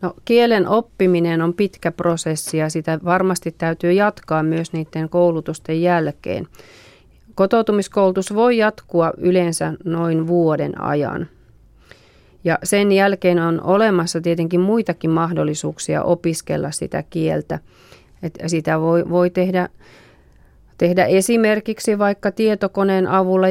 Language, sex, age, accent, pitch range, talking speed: Finnish, female, 30-49, native, 165-190 Hz, 105 wpm